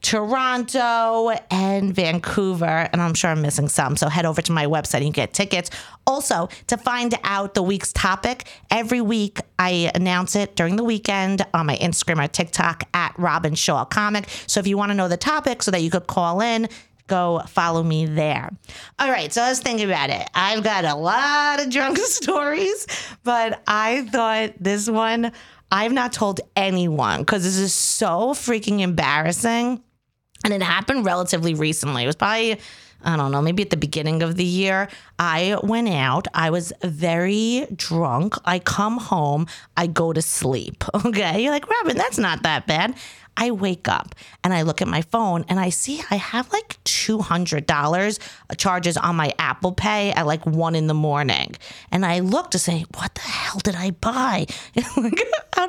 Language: English